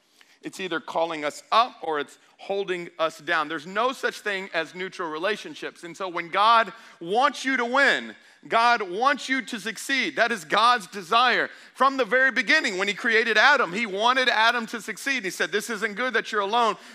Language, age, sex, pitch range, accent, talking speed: English, 40-59, male, 200-240 Hz, American, 195 wpm